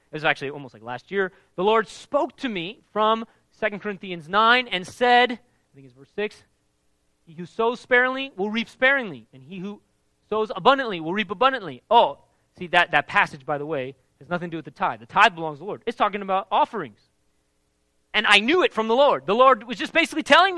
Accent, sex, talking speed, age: American, male, 220 wpm, 30-49